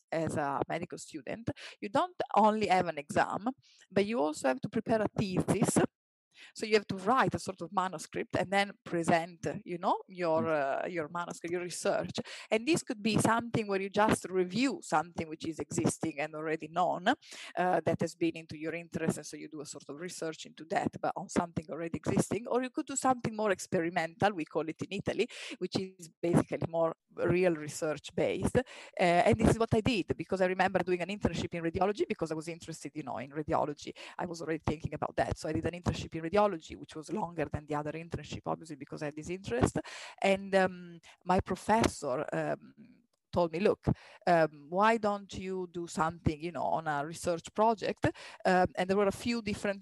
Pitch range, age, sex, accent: 160-205 Hz, 20-39, female, Italian